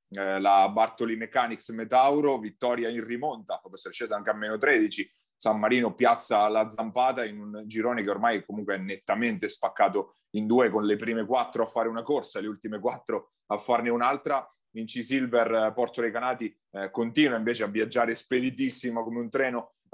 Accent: native